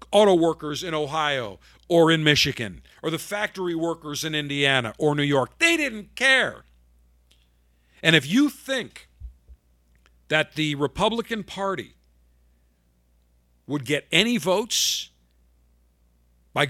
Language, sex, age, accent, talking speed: English, male, 50-69, American, 115 wpm